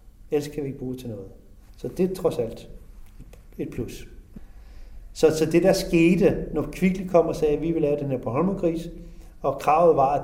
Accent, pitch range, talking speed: native, 120-165 Hz, 215 wpm